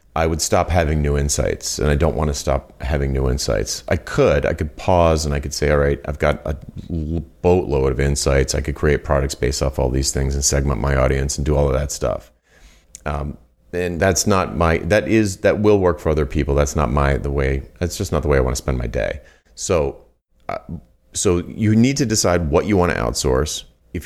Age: 30-49